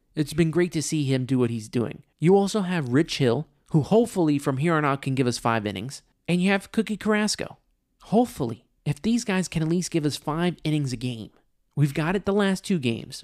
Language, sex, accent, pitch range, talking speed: English, male, American, 135-180 Hz, 230 wpm